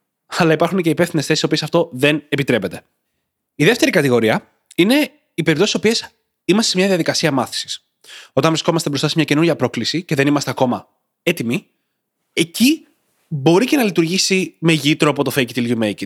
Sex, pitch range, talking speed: male, 145-205 Hz, 185 wpm